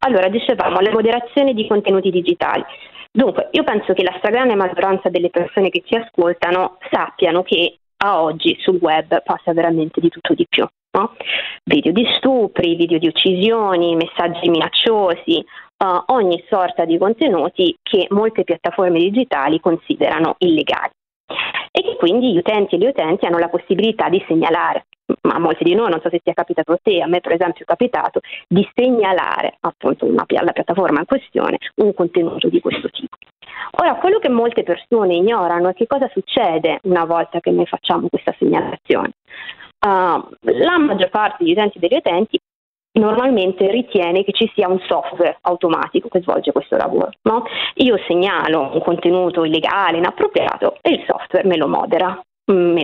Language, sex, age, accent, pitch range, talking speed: Italian, female, 20-39, native, 175-245 Hz, 165 wpm